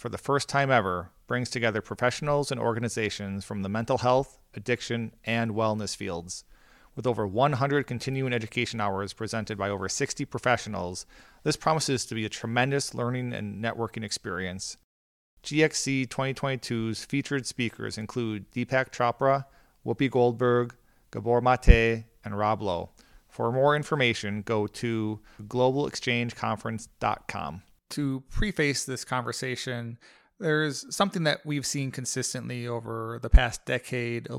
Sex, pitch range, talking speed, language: male, 110-135 Hz, 130 wpm, English